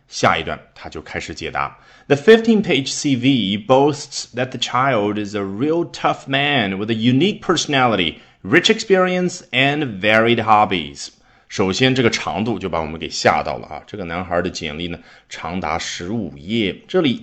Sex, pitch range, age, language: male, 95-135 Hz, 30-49, Chinese